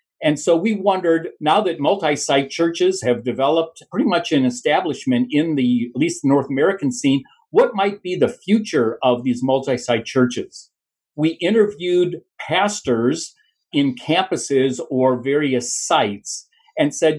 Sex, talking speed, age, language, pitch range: male, 140 wpm, 50-69, English, 130-205 Hz